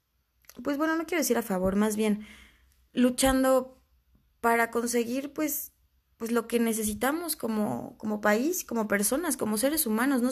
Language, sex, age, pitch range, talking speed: Spanish, female, 20-39, 200-240 Hz, 150 wpm